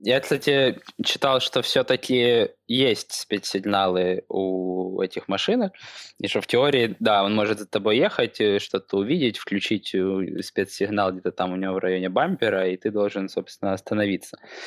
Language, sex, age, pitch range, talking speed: Ukrainian, male, 20-39, 105-130 Hz, 145 wpm